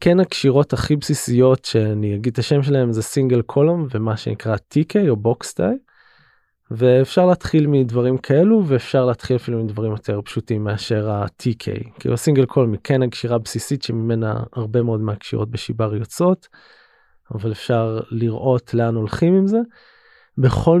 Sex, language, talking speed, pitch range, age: male, Hebrew, 145 wpm, 115-140 Hz, 20-39